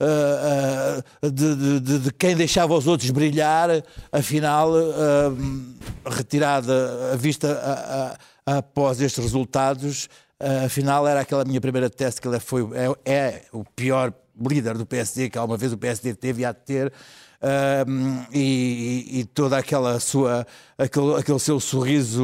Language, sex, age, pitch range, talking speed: Portuguese, male, 60-79, 125-150 Hz, 155 wpm